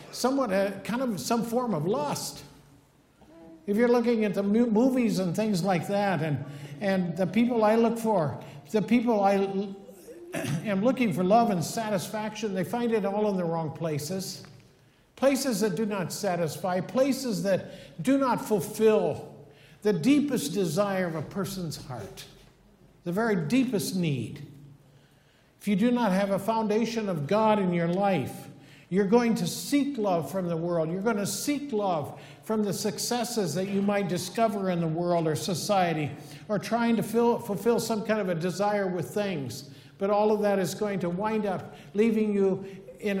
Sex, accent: male, American